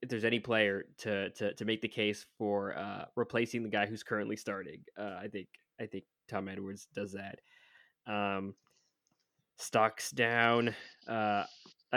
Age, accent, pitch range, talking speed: 20-39, American, 100-115 Hz, 155 wpm